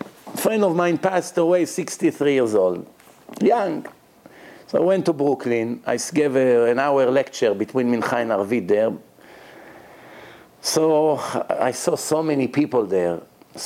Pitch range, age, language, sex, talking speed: 135-175 Hz, 50-69, English, male, 140 wpm